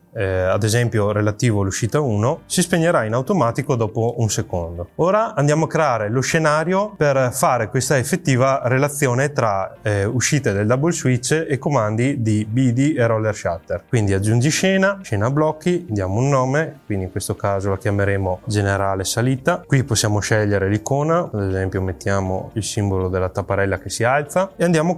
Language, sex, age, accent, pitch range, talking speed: Italian, male, 30-49, native, 105-140 Hz, 170 wpm